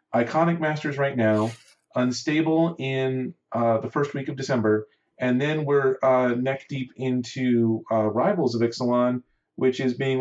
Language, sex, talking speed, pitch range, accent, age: English, male, 155 wpm, 115-150 Hz, American, 40-59